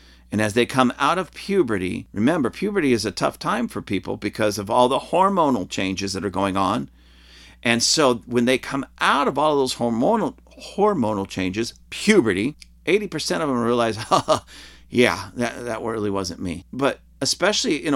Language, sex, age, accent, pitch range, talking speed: English, male, 50-69, American, 105-170 Hz, 175 wpm